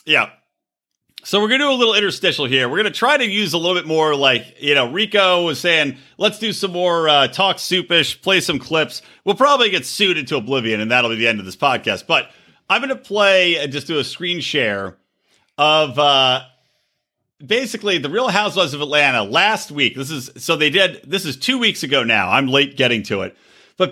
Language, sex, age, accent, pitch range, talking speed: English, male, 40-59, American, 140-195 Hz, 225 wpm